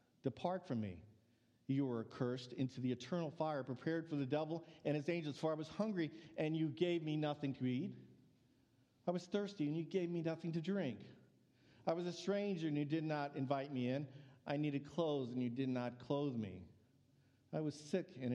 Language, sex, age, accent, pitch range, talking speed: English, male, 50-69, American, 125-165 Hz, 205 wpm